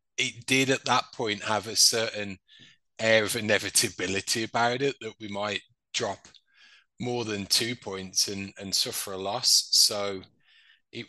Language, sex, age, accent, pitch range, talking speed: English, male, 20-39, British, 105-130 Hz, 150 wpm